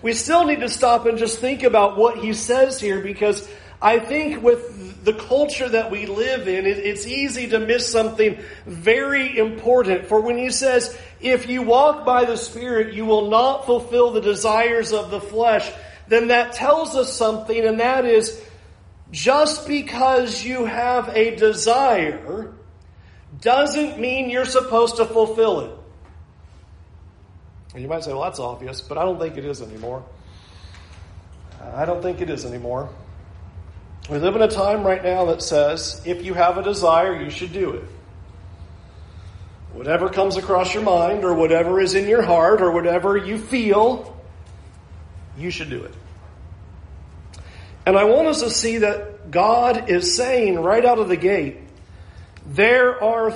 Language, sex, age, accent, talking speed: English, male, 40-59, American, 160 wpm